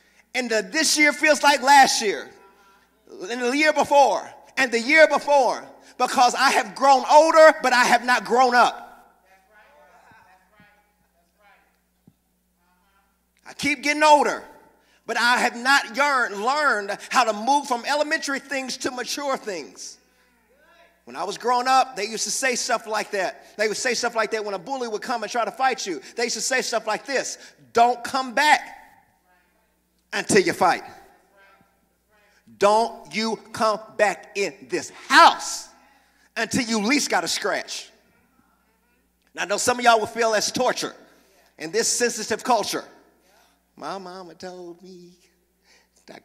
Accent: American